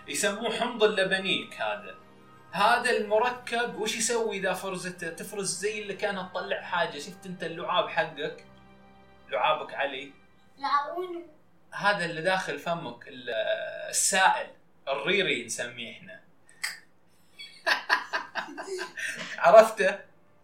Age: 20-39